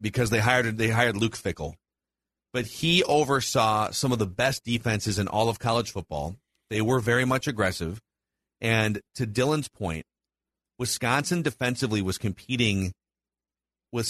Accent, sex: American, male